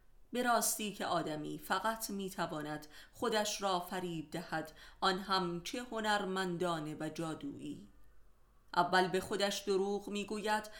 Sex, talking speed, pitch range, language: female, 115 wpm, 160-200 Hz, Persian